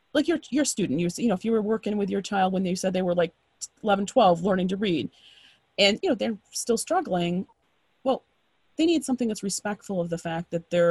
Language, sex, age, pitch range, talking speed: English, female, 30-49, 180-265 Hz, 235 wpm